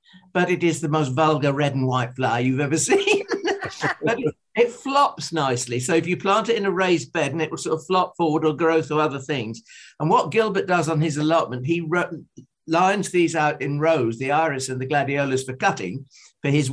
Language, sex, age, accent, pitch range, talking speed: English, male, 50-69, British, 140-175 Hz, 215 wpm